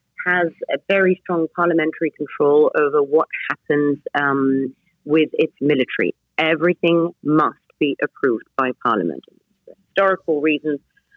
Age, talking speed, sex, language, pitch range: 30-49, 115 wpm, female, English, 150-175 Hz